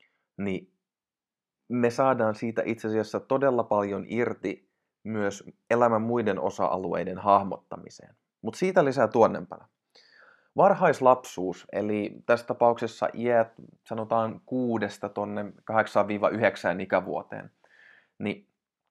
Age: 20-39